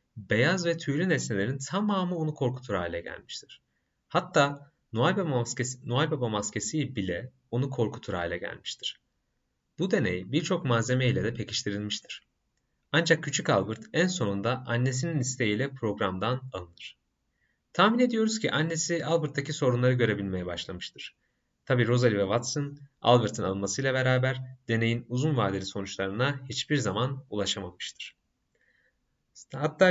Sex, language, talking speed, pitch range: male, Turkish, 115 wpm, 105-145 Hz